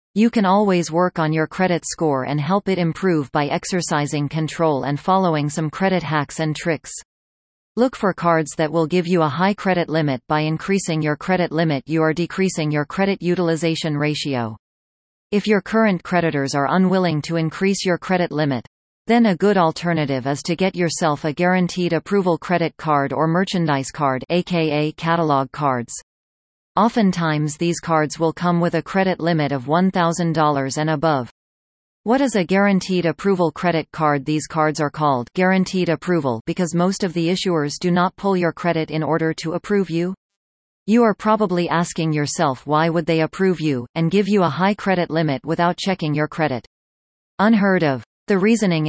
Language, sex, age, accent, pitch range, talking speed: English, female, 40-59, American, 150-185 Hz, 175 wpm